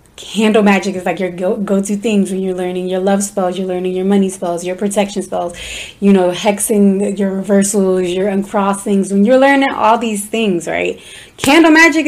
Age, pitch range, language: 20-39, 190-235 Hz, English